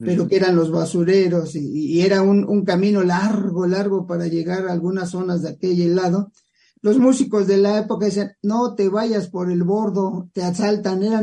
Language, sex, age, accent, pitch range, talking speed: English, male, 50-69, Mexican, 180-210 Hz, 190 wpm